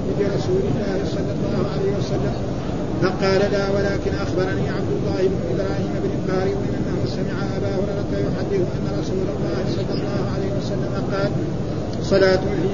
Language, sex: Arabic, male